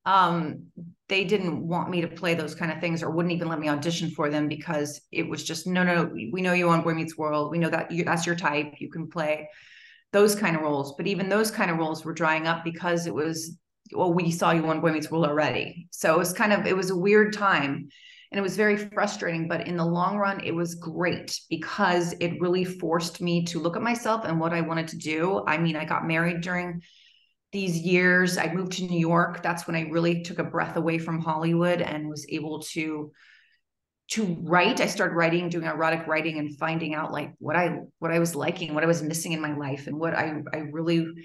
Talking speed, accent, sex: 235 wpm, American, female